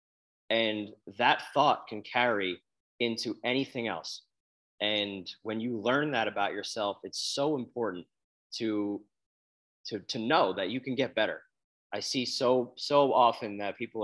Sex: male